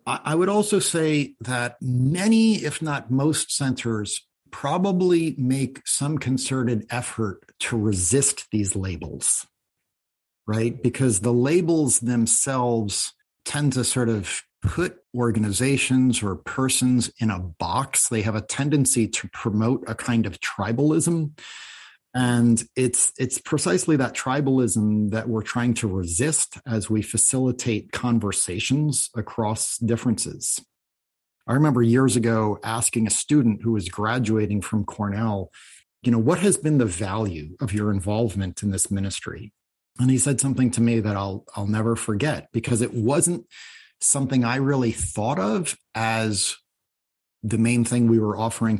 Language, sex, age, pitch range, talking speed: English, male, 50-69, 110-130 Hz, 140 wpm